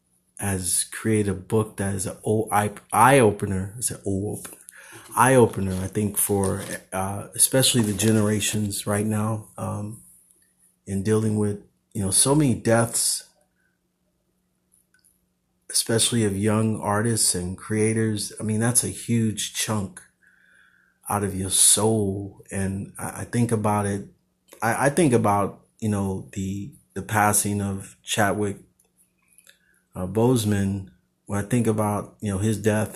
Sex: male